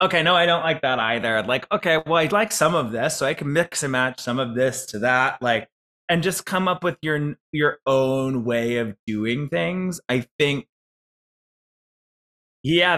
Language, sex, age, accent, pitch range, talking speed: English, male, 20-39, American, 120-155 Hz, 195 wpm